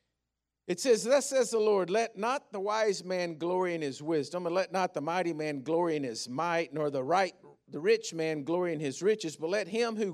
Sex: male